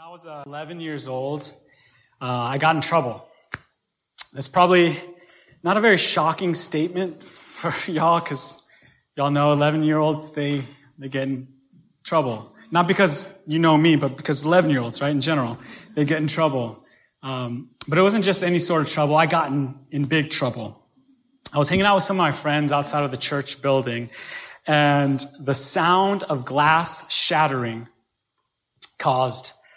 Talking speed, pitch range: 160 wpm, 135-175 Hz